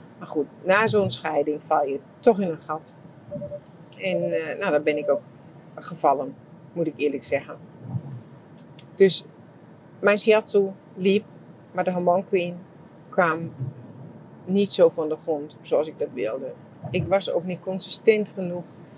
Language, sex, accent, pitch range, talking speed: English, female, Dutch, 155-195 Hz, 145 wpm